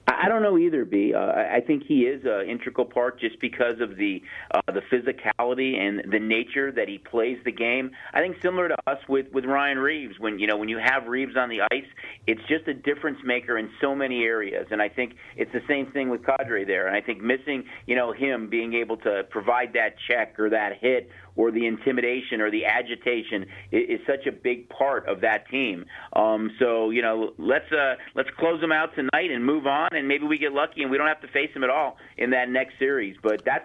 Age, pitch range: 40-59, 115-140 Hz